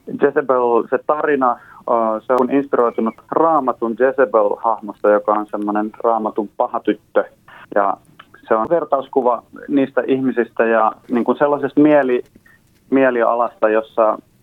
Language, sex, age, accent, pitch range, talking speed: Finnish, male, 30-49, native, 105-130 Hz, 95 wpm